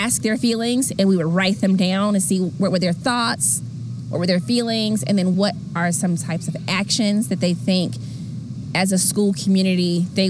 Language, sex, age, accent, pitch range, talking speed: English, female, 20-39, American, 175-200 Hz, 200 wpm